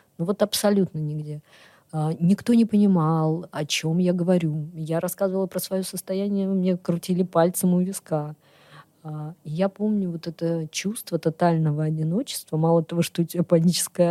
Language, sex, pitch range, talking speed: Russian, female, 155-195 Hz, 155 wpm